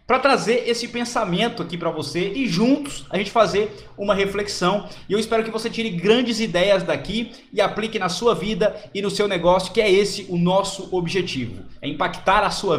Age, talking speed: 20-39, 195 wpm